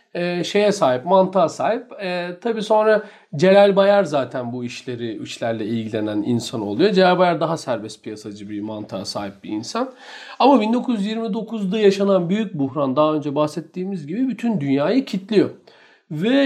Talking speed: 145 wpm